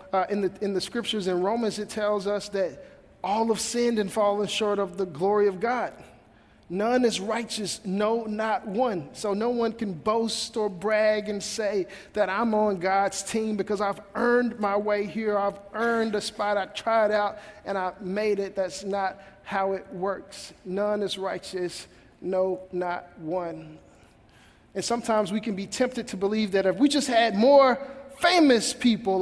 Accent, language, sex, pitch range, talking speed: American, English, male, 200-250 Hz, 175 wpm